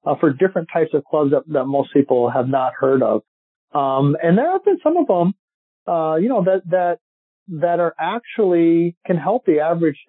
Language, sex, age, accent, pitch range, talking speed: English, male, 40-59, American, 130-170 Hz, 200 wpm